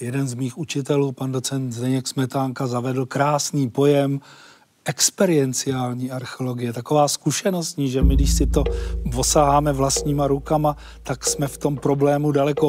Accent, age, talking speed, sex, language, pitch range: native, 40-59, 135 wpm, male, Czech, 135-150 Hz